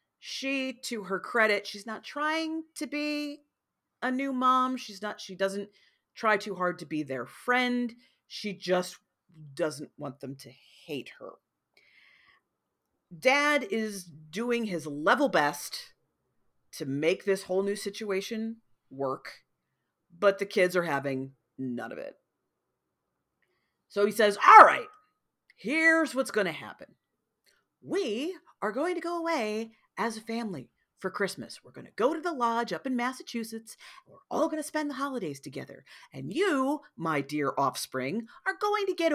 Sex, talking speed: female, 155 wpm